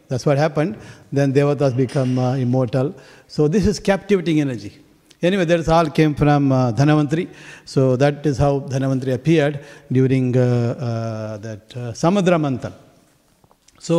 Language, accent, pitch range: English, Indian, 135-165 Hz